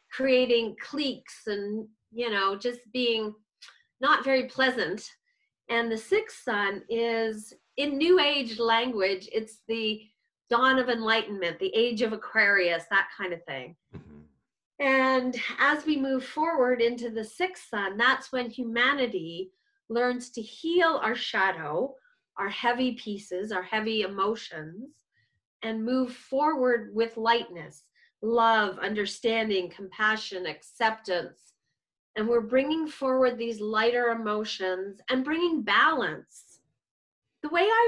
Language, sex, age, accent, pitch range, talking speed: English, female, 30-49, American, 215-260 Hz, 120 wpm